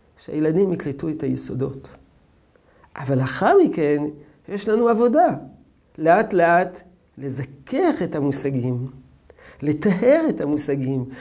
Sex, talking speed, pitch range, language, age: male, 100 wpm, 145-200 Hz, Hebrew, 50-69